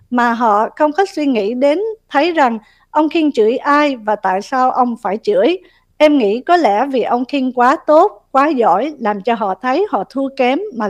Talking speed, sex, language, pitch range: 210 wpm, female, Vietnamese, 225-300 Hz